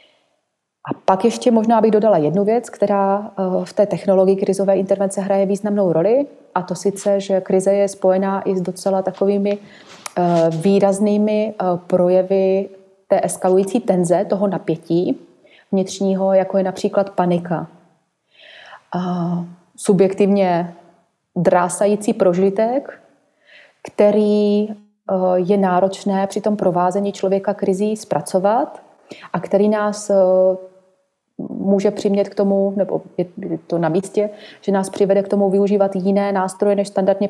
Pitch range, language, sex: 185-200 Hz, Czech, female